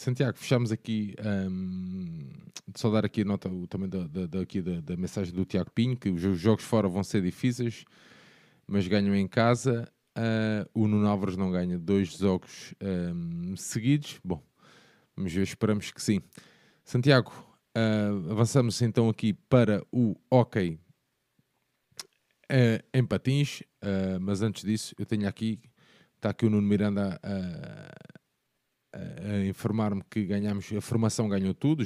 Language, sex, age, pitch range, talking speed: Portuguese, male, 20-39, 95-115 Hz, 150 wpm